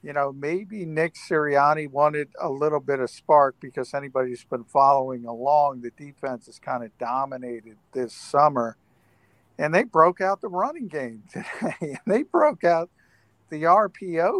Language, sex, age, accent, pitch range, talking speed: English, male, 50-69, American, 130-155 Hz, 160 wpm